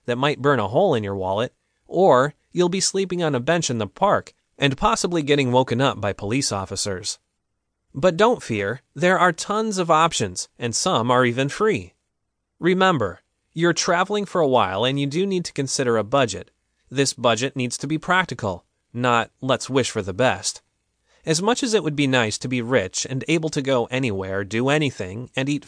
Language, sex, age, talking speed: English, male, 30-49, 195 wpm